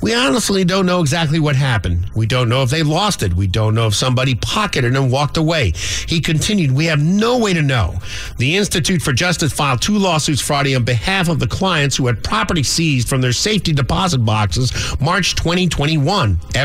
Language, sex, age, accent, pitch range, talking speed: English, male, 50-69, American, 115-160 Hz, 200 wpm